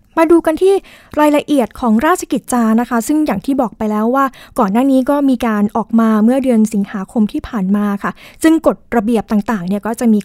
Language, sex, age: Thai, female, 20-39